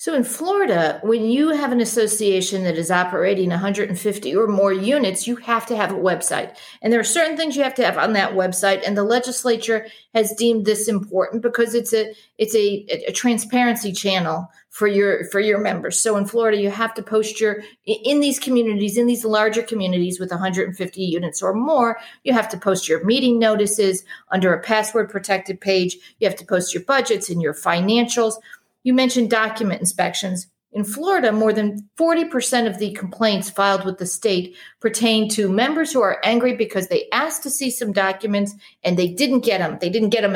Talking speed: 200 wpm